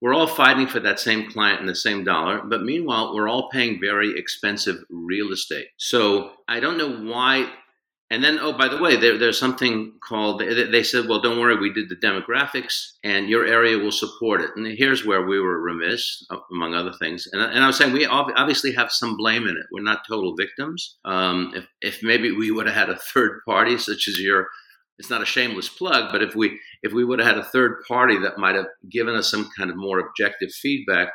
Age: 50-69